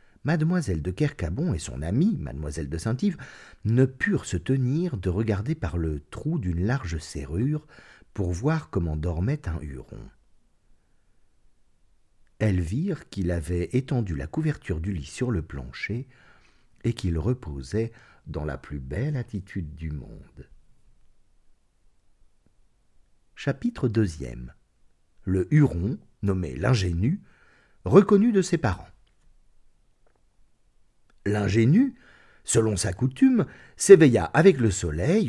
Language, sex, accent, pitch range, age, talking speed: French, male, French, 90-130 Hz, 50-69, 115 wpm